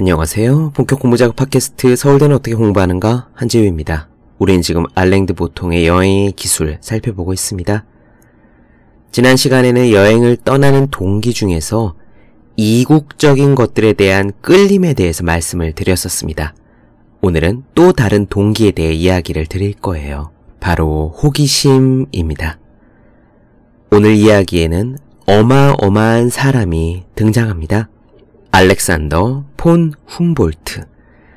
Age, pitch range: 30-49, 90-125 Hz